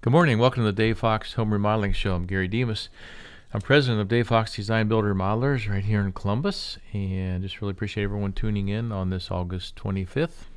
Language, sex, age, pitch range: English, male, 50-69, 90-110 Hz